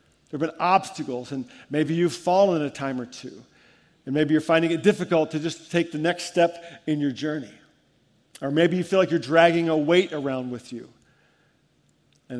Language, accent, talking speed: English, American, 195 wpm